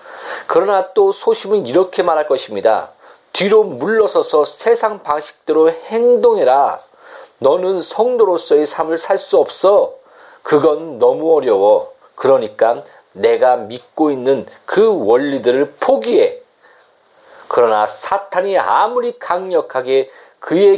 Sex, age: male, 40-59